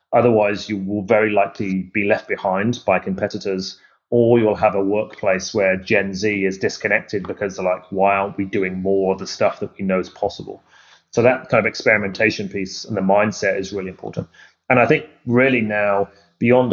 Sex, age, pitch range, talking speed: male, 30-49, 95-115 Hz, 195 wpm